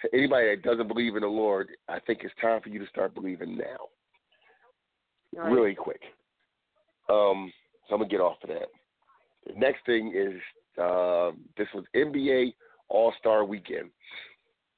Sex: male